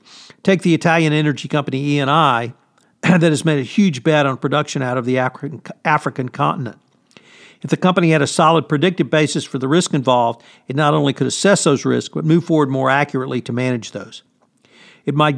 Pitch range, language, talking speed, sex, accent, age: 135-165 Hz, English, 185 wpm, male, American, 50-69